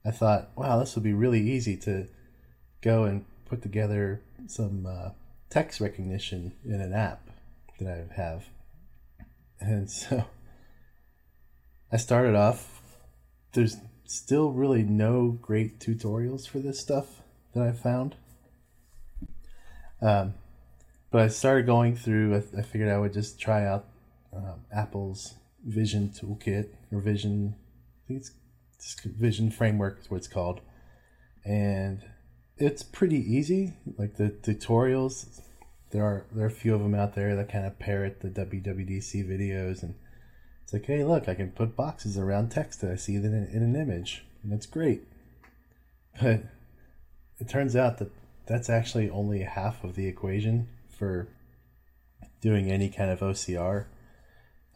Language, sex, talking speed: English, male, 140 wpm